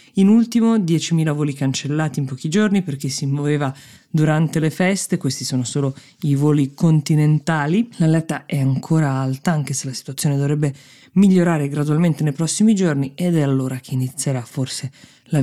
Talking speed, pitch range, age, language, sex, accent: 160 wpm, 135-165 Hz, 20-39, Italian, female, native